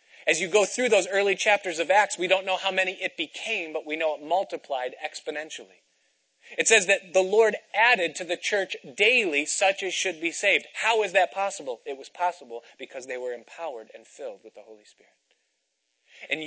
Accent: American